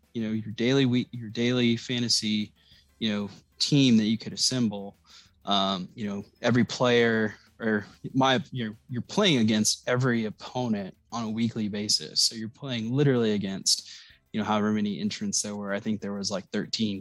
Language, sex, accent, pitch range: English, male, American, 100-125 Hz